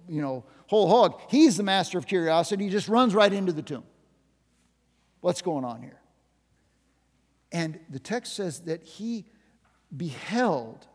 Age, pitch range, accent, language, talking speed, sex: 50-69, 170-230 Hz, American, English, 150 wpm, male